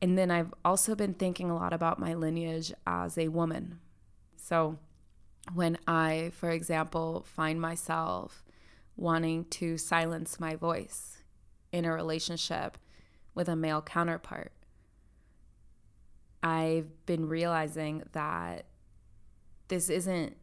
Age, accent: 20-39, American